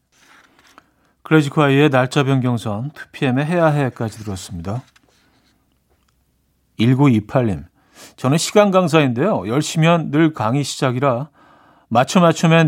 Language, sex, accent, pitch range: Korean, male, native, 120-160 Hz